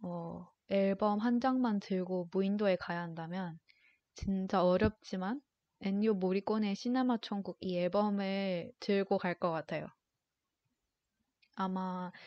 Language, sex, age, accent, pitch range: Korean, female, 20-39, native, 185-220 Hz